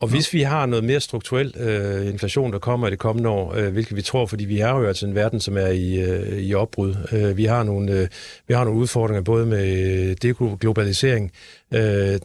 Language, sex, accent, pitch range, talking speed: Danish, male, native, 100-120 Hz, 220 wpm